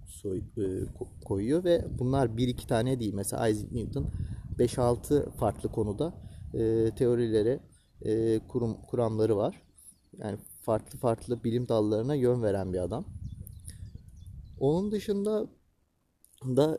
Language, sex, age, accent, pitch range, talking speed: Turkish, male, 30-49, native, 105-135 Hz, 110 wpm